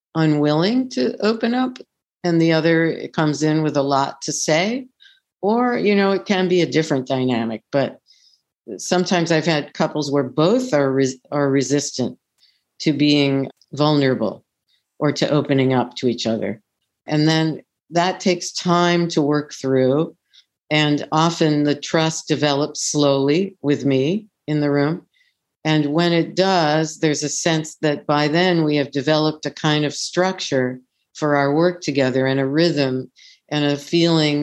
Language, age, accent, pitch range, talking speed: English, 50-69, American, 145-165 Hz, 155 wpm